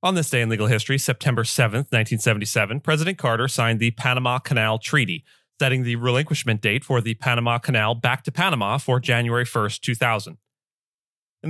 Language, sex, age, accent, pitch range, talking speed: English, male, 30-49, American, 120-140 Hz, 165 wpm